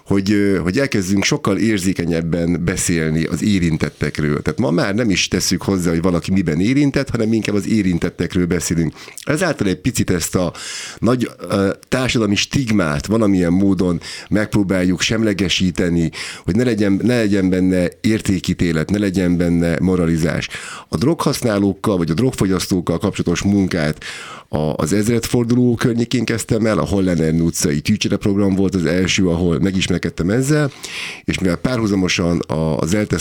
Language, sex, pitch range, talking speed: Hungarian, male, 85-105 Hz, 135 wpm